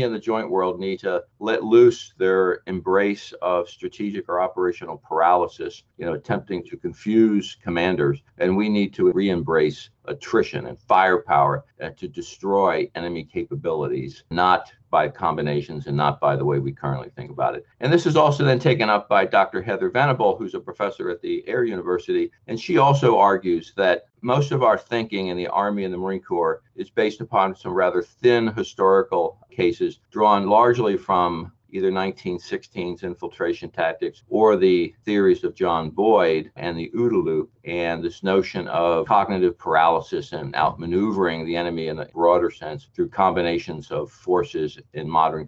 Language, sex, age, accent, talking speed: English, male, 50-69, American, 165 wpm